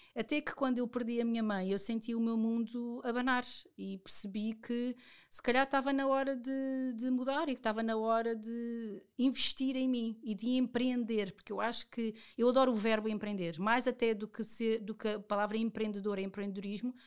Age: 40-59